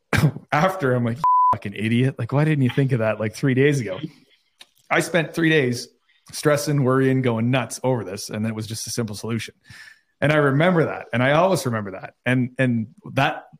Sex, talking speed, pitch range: male, 200 wpm, 110-140 Hz